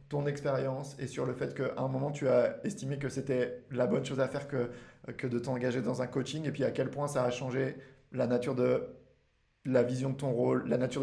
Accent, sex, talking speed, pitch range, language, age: French, male, 240 wpm, 130-145 Hz, French, 20-39